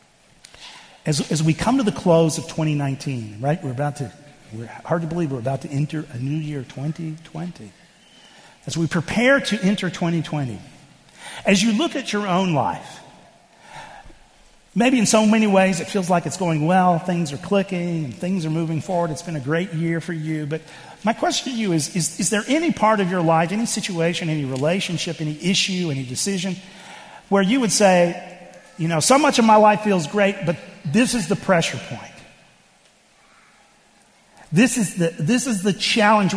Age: 50-69